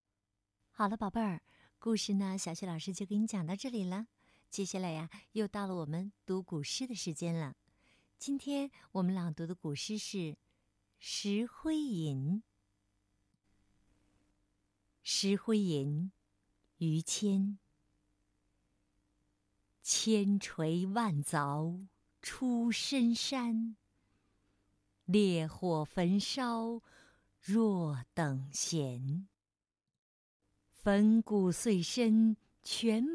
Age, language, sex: 50-69, Chinese, female